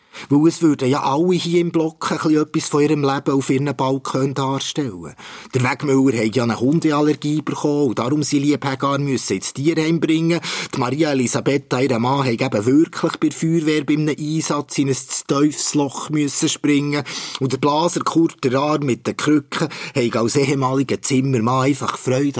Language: German